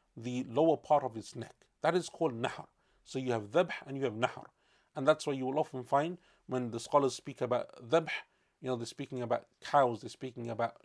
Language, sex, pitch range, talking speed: English, male, 125-160 Hz, 220 wpm